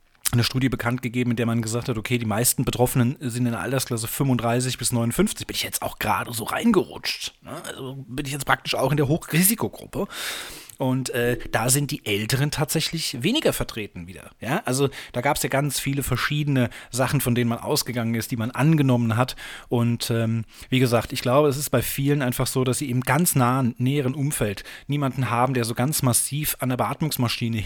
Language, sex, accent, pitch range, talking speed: German, male, German, 115-135 Hz, 200 wpm